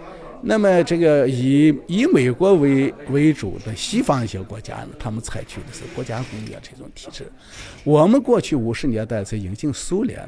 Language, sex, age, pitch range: Chinese, male, 50-69, 110-145 Hz